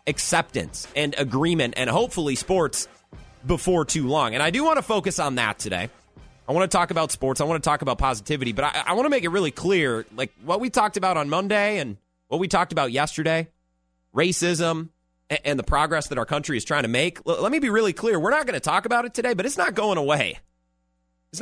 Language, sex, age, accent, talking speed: English, male, 30-49, American, 230 wpm